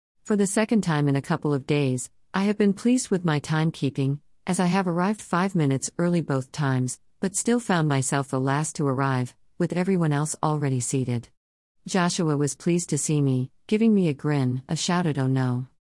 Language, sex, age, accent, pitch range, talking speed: English, female, 50-69, American, 130-170 Hz, 195 wpm